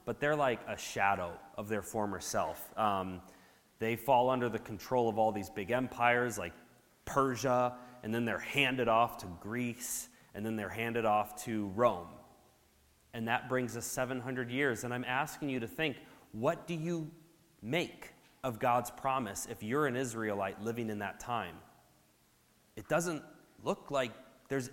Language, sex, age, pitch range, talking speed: English, male, 20-39, 110-145 Hz, 165 wpm